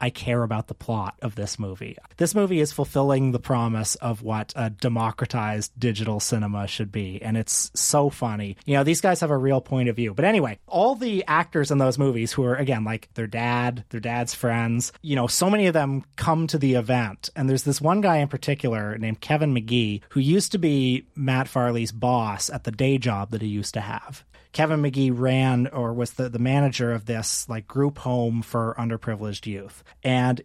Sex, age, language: male, 30-49, English